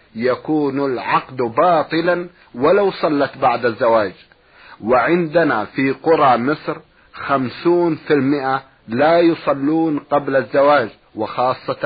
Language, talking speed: Arabic, 90 wpm